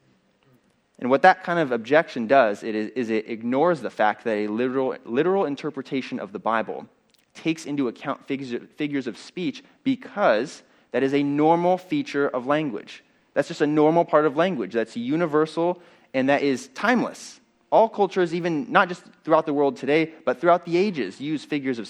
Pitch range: 125-185 Hz